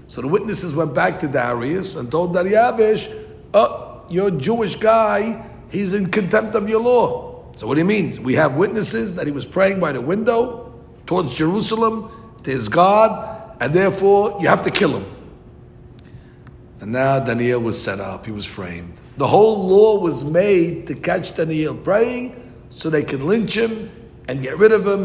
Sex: male